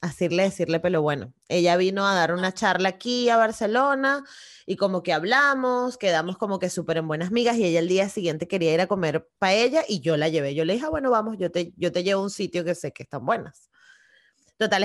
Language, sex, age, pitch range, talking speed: Spanish, female, 20-39, 180-240 Hz, 245 wpm